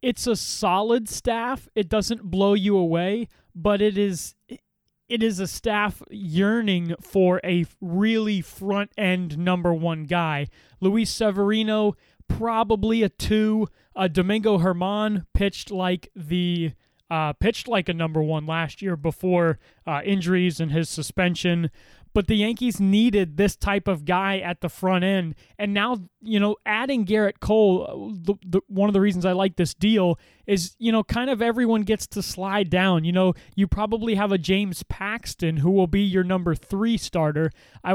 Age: 20-39